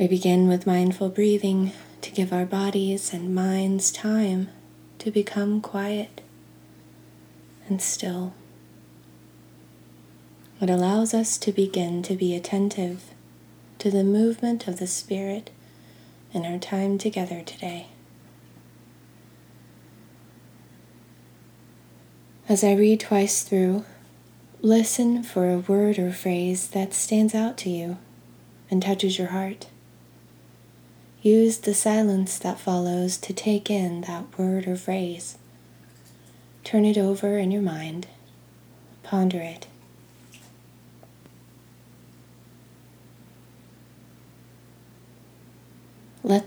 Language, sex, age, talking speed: English, female, 20-39, 100 wpm